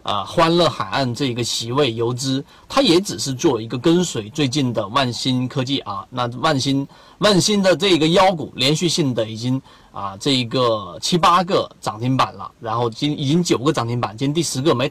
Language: Chinese